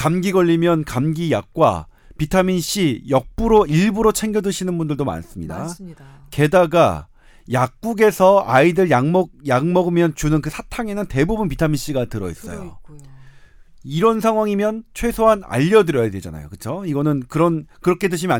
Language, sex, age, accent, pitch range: Korean, male, 40-59, native, 130-190 Hz